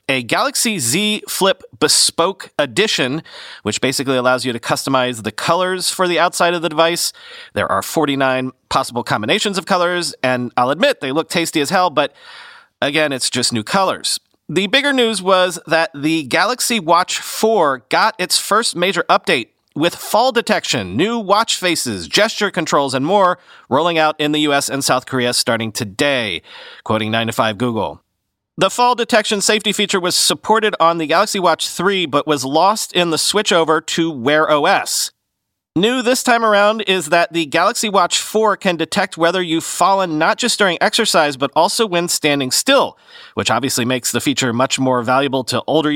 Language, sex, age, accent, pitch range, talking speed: English, male, 40-59, American, 140-205 Hz, 170 wpm